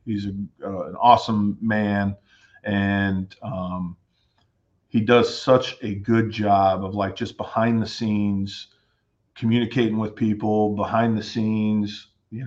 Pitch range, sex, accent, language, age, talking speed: 95-105 Hz, male, American, English, 40-59, 130 wpm